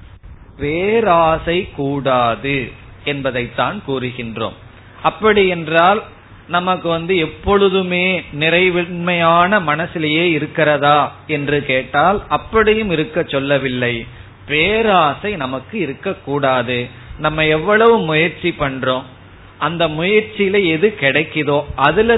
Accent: native